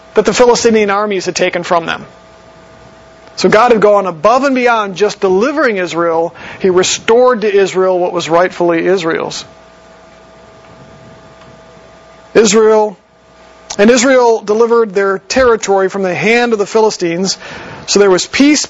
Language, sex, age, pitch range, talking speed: English, male, 40-59, 180-220 Hz, 135 wpm